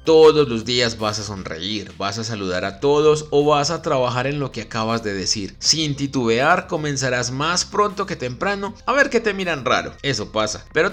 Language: Spanish